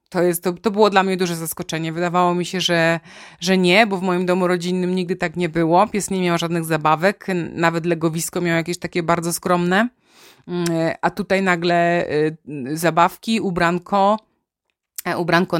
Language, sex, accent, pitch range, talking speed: Polish, female, native, 170-195 Hz, 160 wpm